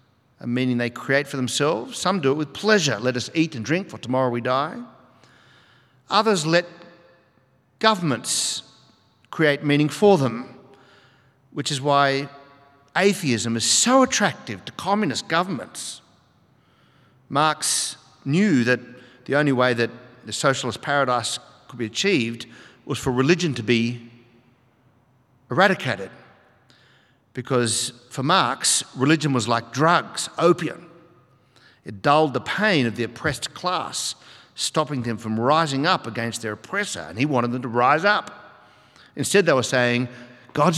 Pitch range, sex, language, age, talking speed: 125-155 Hz, male, English, 50-69, 135 wpm